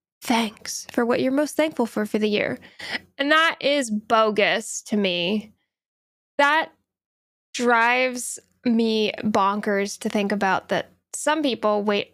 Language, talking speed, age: English, 135 wpm, 10-29